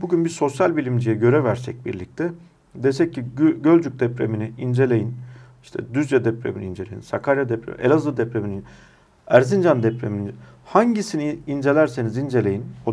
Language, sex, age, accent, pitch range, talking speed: Turkish, male, 50-69, native, 115-145 Hz, 120 wpm